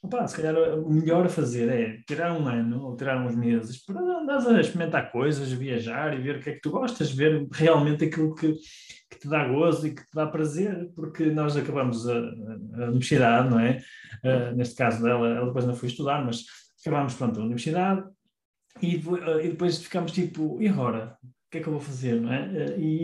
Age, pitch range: 20-39, 135-190 Hz